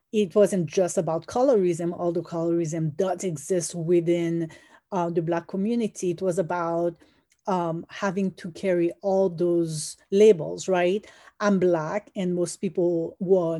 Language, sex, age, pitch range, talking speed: English, female, 40-59, 175-210 Hz, 140 wpm